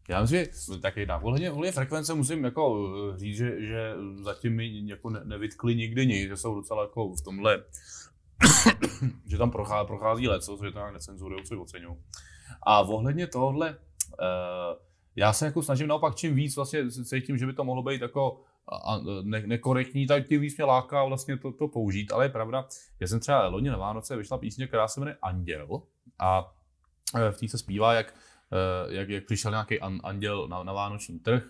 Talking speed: 180 wpm